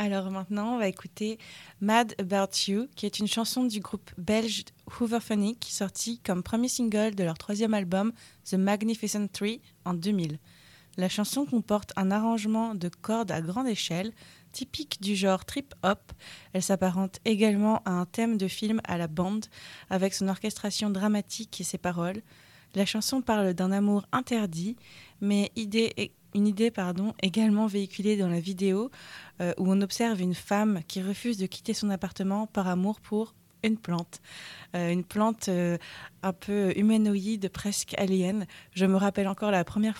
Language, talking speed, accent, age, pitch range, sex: French, 170 wpm, French, 20-39, 190-220 Hz, female